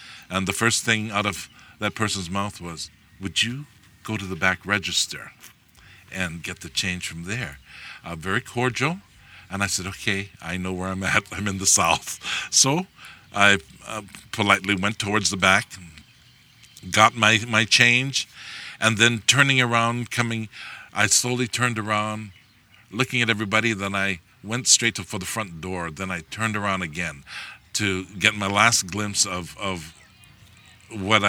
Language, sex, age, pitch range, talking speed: English, male, 50-69, 95-125 Hz, 165 wpm